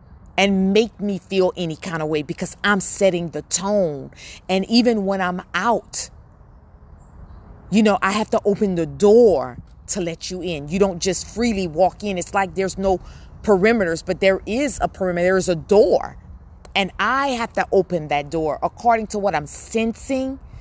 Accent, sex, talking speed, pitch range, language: American, female, 180 wpm, 170-220 Hz, English